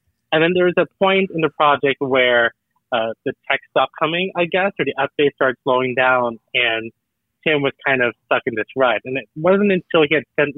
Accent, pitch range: American, 115-145 Hz